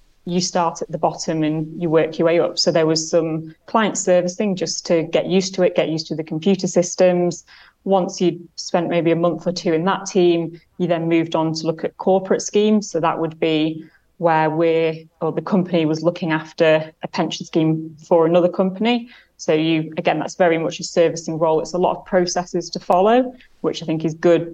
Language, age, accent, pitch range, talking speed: English, 30-49, British, 160-180 Hz, 215 wpm